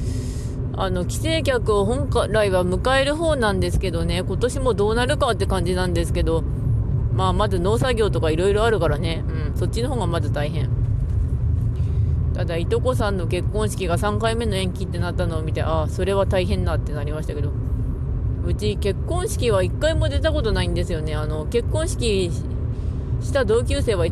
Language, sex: Japanese, female